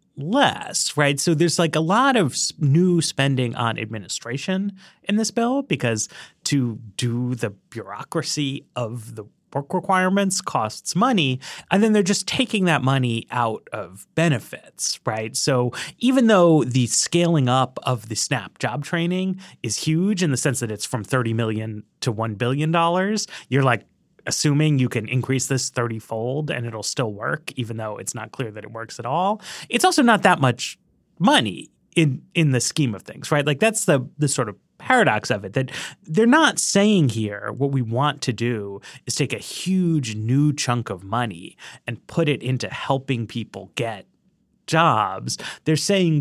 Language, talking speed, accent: English, 175 wpm, American